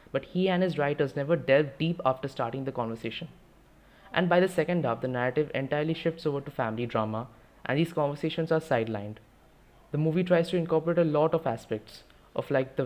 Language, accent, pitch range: English, Indian, 120-155 Hz